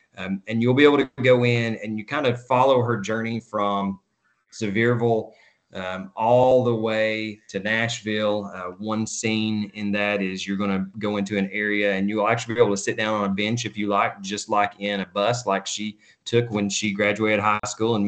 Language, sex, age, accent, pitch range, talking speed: English, male, 20-39, American, 100-115 Hz, 215 wpm